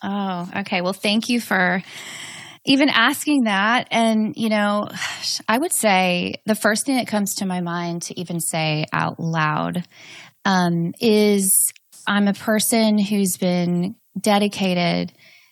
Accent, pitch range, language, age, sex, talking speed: American, 175-220 Hz, English, 20-39, female, 140 wpm